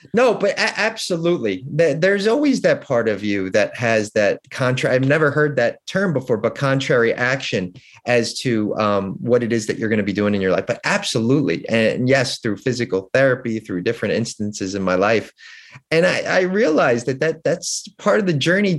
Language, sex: English, male